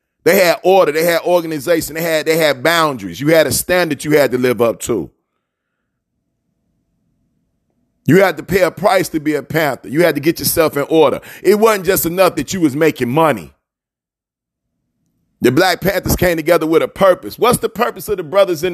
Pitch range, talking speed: 160-210 Hz, 195 wpm